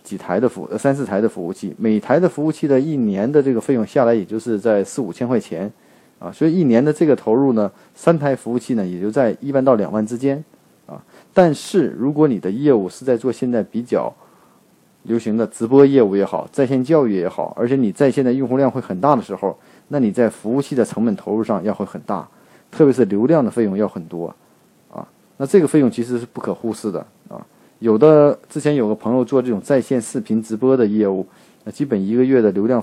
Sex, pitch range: male, 110-145 Hz